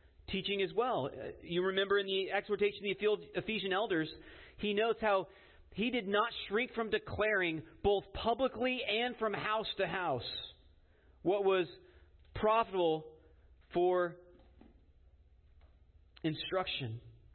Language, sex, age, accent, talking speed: English, male, 40-59, American, 115 wpm